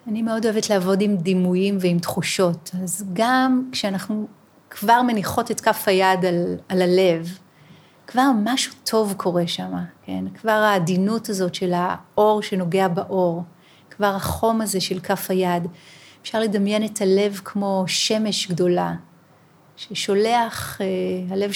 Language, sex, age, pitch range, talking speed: Hebrew, female, 30-49, 180-215 Hz, 130 wpm